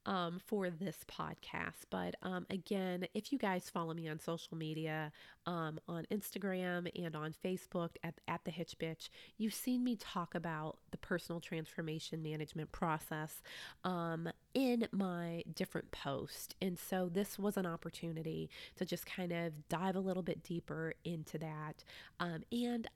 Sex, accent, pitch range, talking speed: female, American, 170-200 Hz, 155 wpm